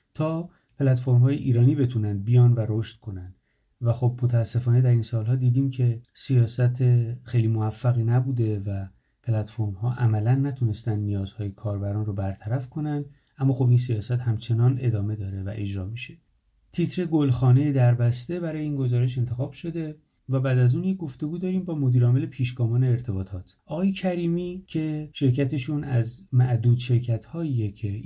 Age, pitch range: 30-49, 110-145 Hz